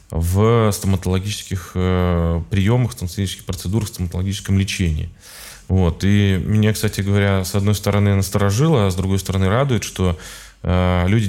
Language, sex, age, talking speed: Russian, male, 20-39, 115 wpm